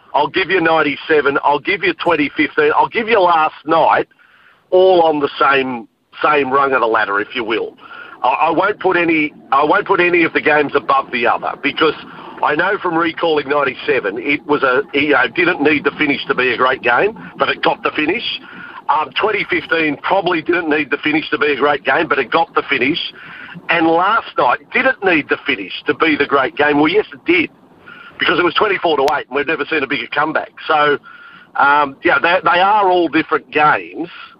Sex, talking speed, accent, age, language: male, 210 wpm, Australian, 50-69, English